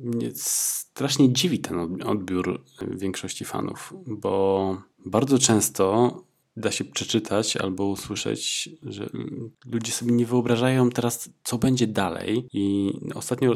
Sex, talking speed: male, 110 wpm